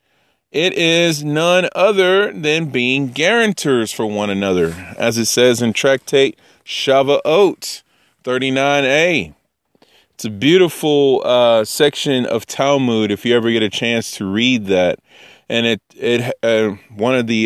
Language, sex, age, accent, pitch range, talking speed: English, male, 30-49, American, 105-125 Hz, 140 wpm